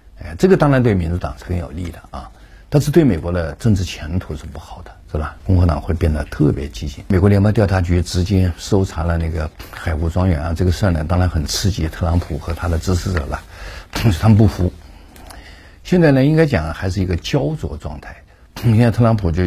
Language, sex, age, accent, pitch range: Chinese, male, 50-69, native, 80-105 Hz